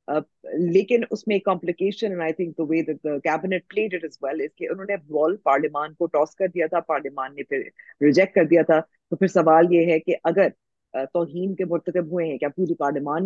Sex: female